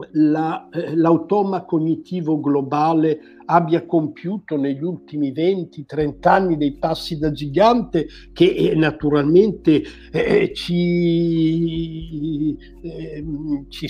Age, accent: 60-79, native